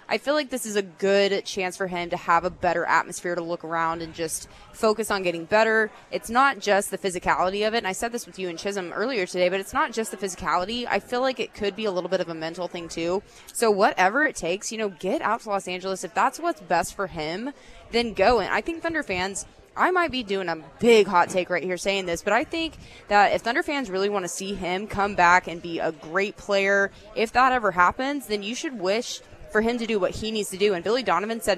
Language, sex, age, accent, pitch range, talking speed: English, female, 20-39, American, 180-220 Hz, 260 wpm